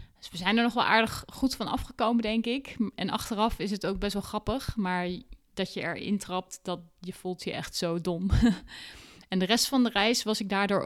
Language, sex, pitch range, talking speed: Dutch, female, 180-220 Hz, 225 wpm